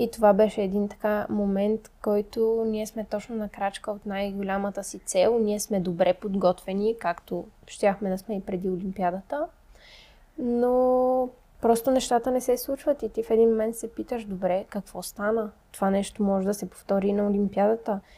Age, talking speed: 20-39, 170 wpm